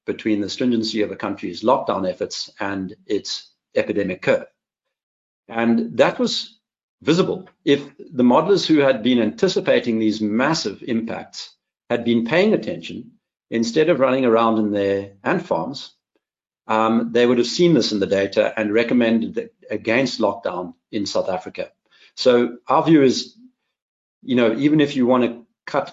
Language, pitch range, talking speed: English, 110-150 Hz, 155 wpm